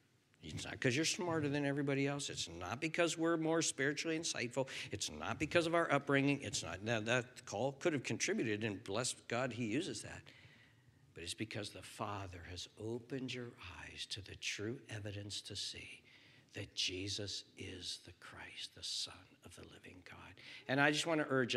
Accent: American